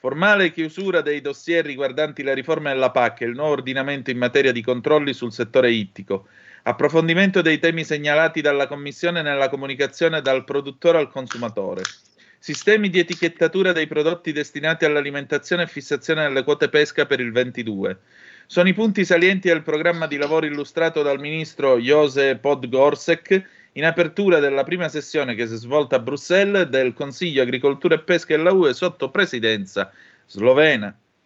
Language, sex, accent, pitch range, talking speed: Italian, male, native, 135-170 Hz, 155 wpm